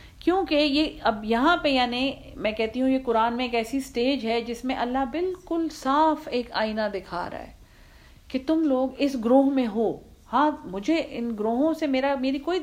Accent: Indian